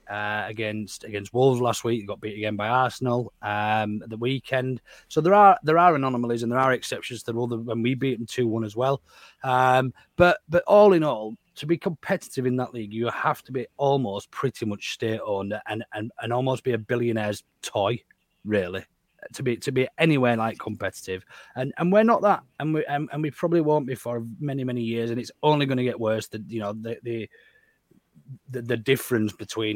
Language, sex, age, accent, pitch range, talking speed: English, male, 30-49, British, 105-130 Hz, 210 wpm